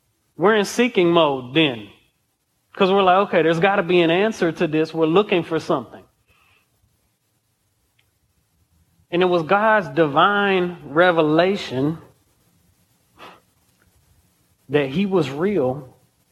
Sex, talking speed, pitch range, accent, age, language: male, 115 wpm, 150-200 Hz, American, 30-49, English